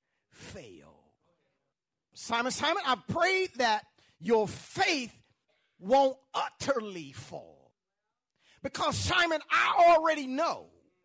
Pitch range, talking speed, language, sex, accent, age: 235-365 Hz, 85 wpm, English, male, American, 40-59